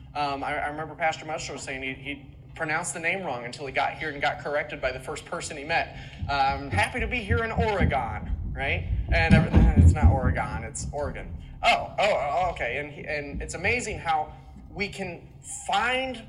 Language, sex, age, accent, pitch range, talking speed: English, male, 30-49, American, 135-175 Hz, 205 wpm